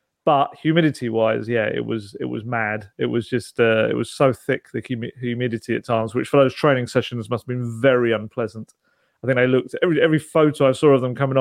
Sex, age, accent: male, 30-49, British